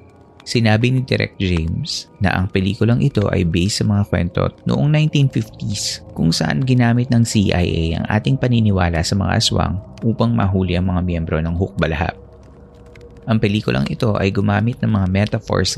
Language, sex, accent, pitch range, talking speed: Filipino, male, native, 95-115 Hz, 155 wpm